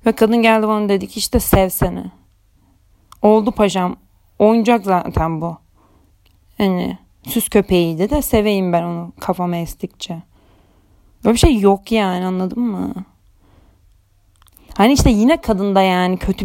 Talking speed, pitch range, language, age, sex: 130 wpm, 180-220 Hz, Turkish, 30-49, female